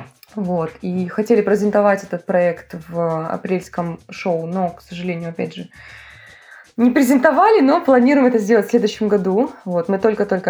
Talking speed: 135 wpm